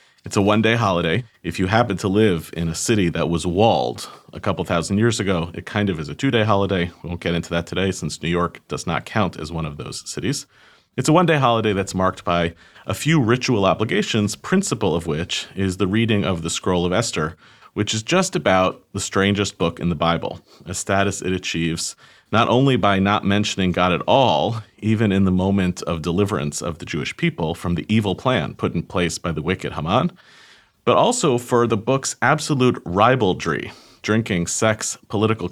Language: English